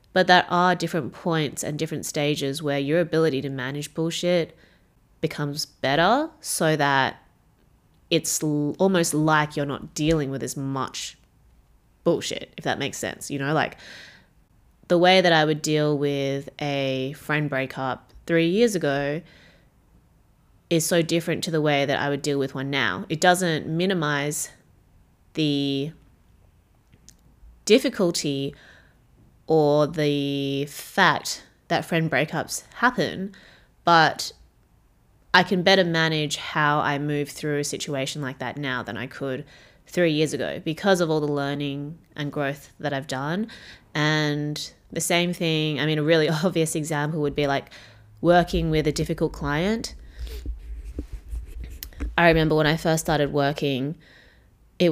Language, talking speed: English, 140 wpm